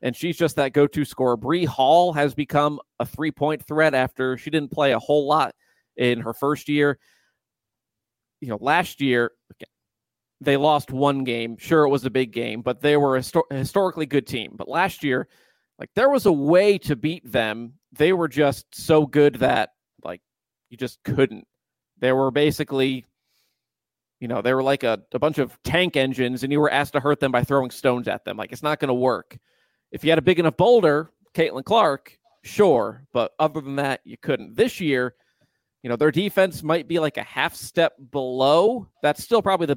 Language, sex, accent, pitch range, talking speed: English, male, American, 130-155 Hz, 200 wpm